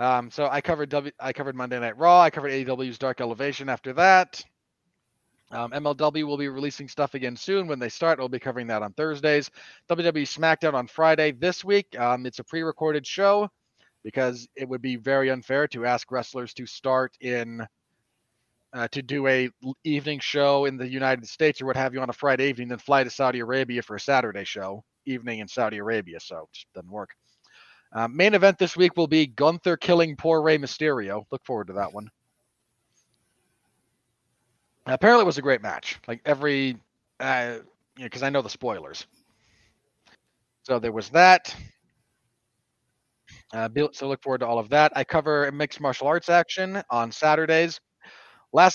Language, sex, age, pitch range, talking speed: English, male, 30-49, 125-155 Hz, 180 wpm